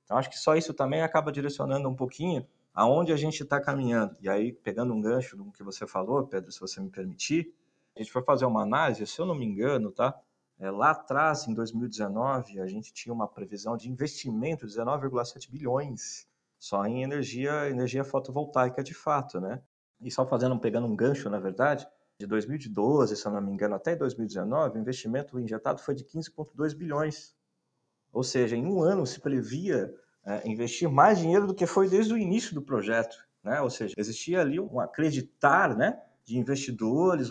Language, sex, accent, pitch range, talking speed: Portuguese, male, Brazilian, 120-165 Hz, 185 wpm